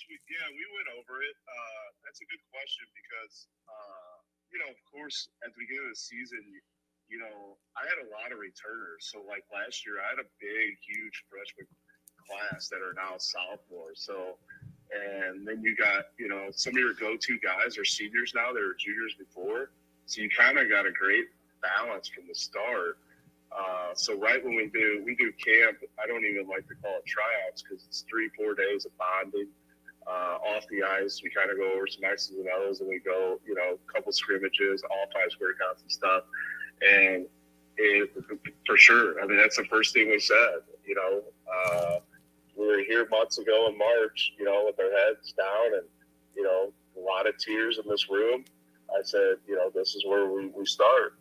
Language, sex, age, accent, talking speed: English, male, 30-49, American, 205 wpm